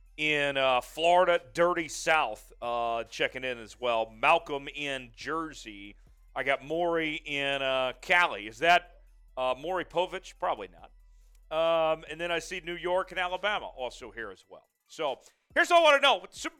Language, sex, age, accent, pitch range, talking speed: English, male, 40-59, American, 165-215 Hz, 175 wpm